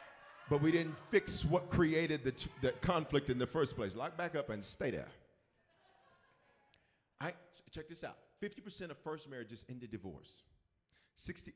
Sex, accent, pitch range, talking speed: male, American, 130-180 Hz, 160 wpm